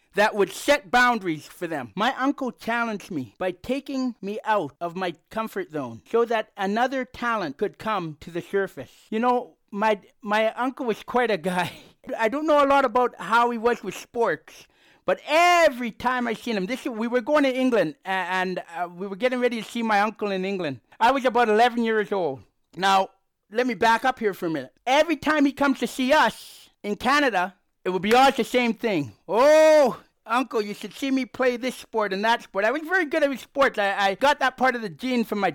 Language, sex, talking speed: English, male, 220 wpm